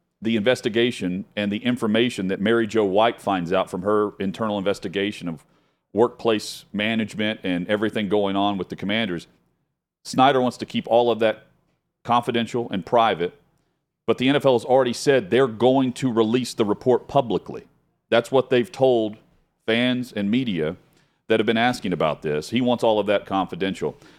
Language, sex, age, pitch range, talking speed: English, male, 40-59, 100-125 Hz, 165 wpm